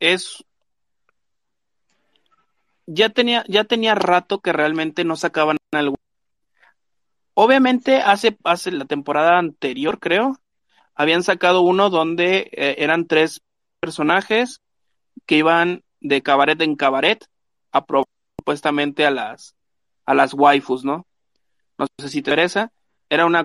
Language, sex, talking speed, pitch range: Spanish, male, 125 wpm, 145-195 Hz